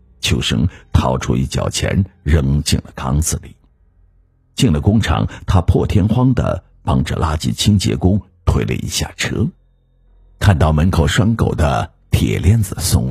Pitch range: 80-105 Hz